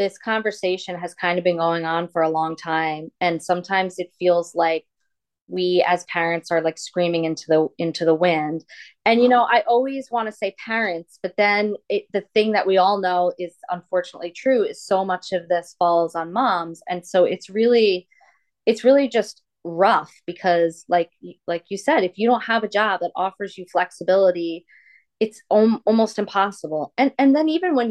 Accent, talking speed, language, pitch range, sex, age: American, 190 wpm, English, 175-225 Hz, female, 20-39